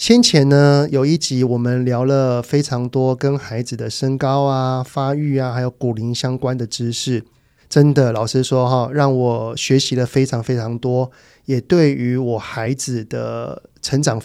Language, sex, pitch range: Chinese, male, 125-145 Hz